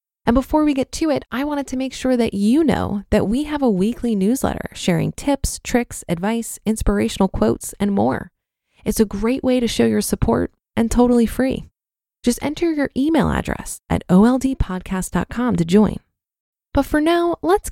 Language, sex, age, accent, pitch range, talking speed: English, female, 20-39, American, 185-255 Hz, 175 wpm